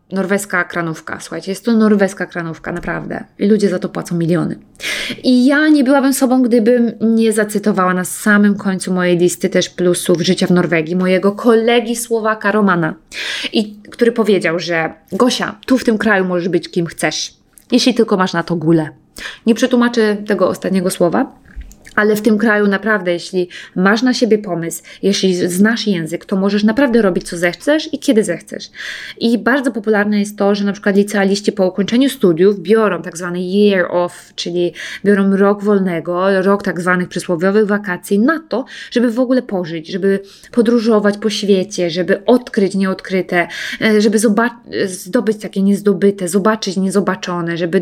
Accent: Polish